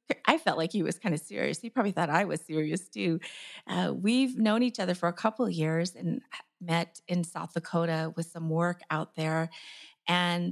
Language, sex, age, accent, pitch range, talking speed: English, female, 30-49, American, 165-200 Hz, 205 wpm